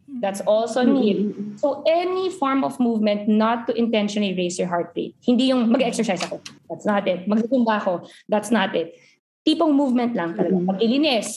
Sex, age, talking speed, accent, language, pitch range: female, 20-39, 155 wpm, native, Filipino, 205-260 Hz